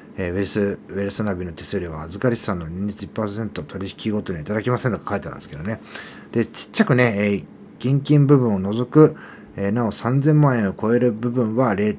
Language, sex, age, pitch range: Japanese, male, 40-59, 95-125 Hz